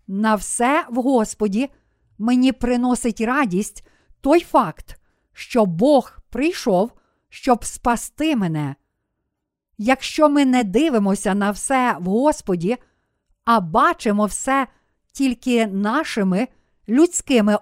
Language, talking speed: Ukrainian, 100 wpm